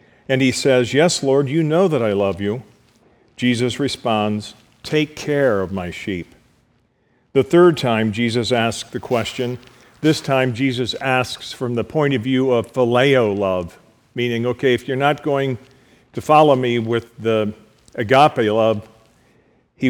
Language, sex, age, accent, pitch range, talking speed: English, male, 50-69, American, 115-135 Hz, 155 wpm